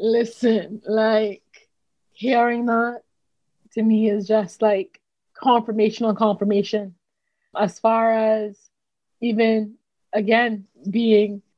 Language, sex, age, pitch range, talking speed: English, female, 20-39, 205-235 Hz, 95 wpm